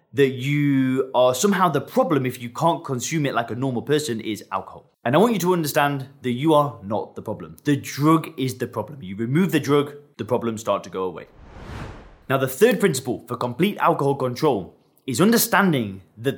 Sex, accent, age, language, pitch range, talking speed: male, British, 20-39, English, 125-170 Hz, 200 wpm